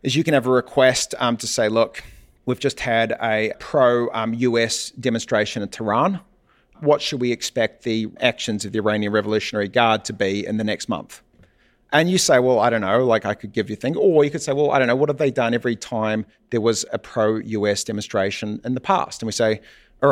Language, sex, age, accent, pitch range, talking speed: English, male, 40-59, Australian, 110-130 Hz, 225 wpm